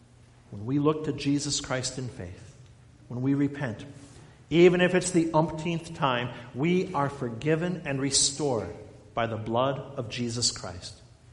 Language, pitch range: English, 120-175 Hz